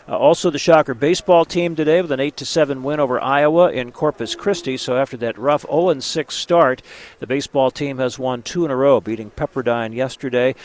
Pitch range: 130-155 Hz